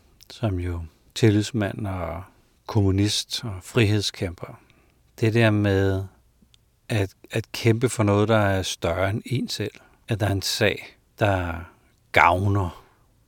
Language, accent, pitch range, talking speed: Danish, native, 90-110 Hz, 125 wpm